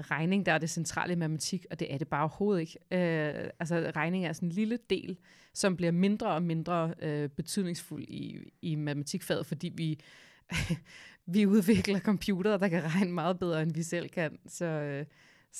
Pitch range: 160-185 Hz